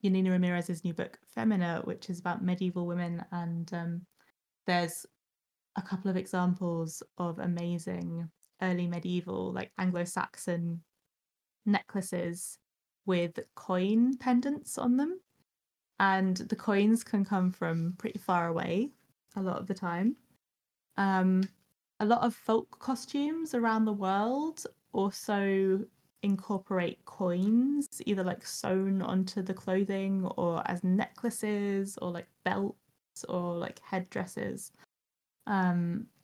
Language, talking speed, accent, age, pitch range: English, 120 wpm, British, 20-39, 180-220 Hz